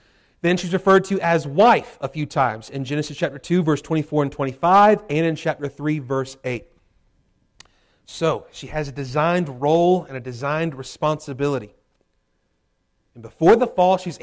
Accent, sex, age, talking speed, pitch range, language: American, male, 30-49, 160 wpm, 140-175 Hz, English